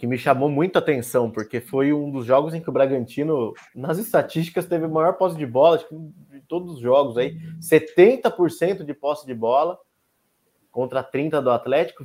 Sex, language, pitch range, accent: male, Portuguese, 120-160 Hz, Brazilian